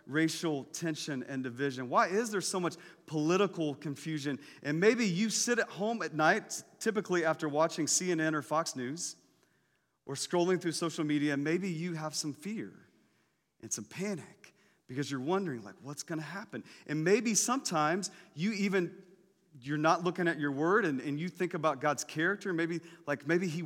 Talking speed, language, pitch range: 175 wpm, English, 150-200 Hz